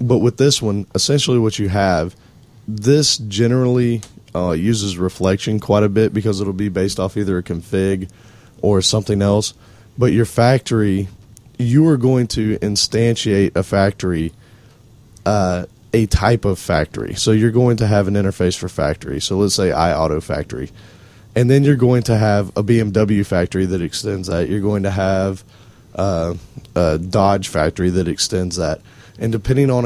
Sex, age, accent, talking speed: male, 30-49, American, 165 wpm